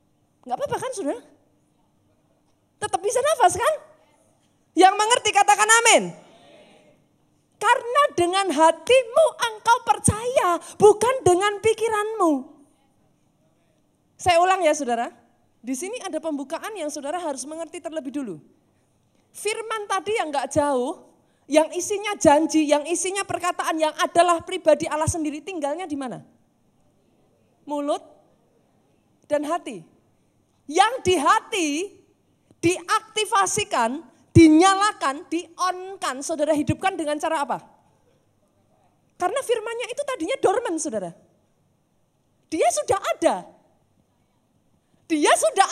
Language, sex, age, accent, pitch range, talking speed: Indonesian, female, 20-39, native, 315-415 Hz, 105 wpm